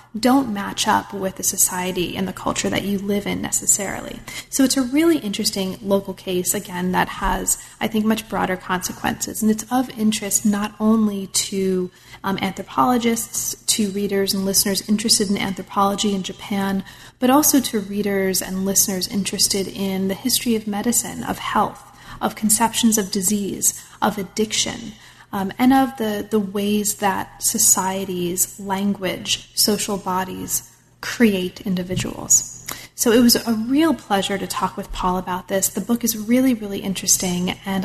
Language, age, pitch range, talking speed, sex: English, 30-49, 190-225 Hz, 155 wpm, female